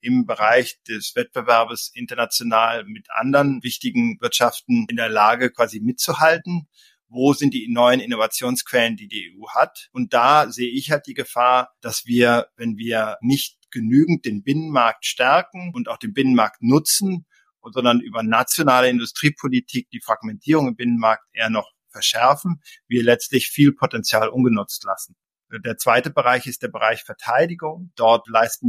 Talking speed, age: 145 wpm, 50-69